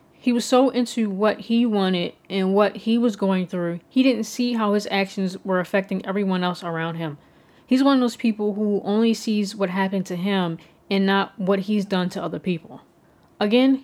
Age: 20-39